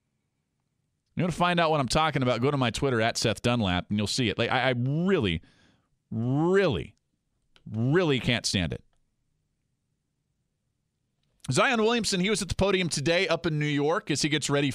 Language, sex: English, male